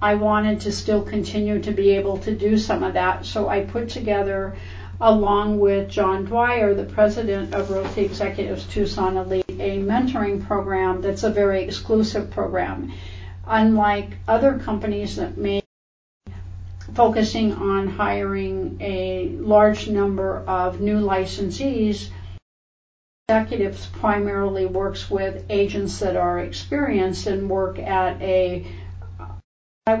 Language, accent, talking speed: English, American, 130 wpm